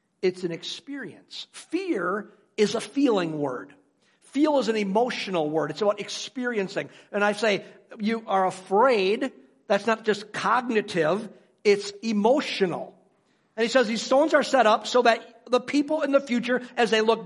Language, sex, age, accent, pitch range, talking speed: English, male, 50-69, American, 180-245 Hz, 160 wpm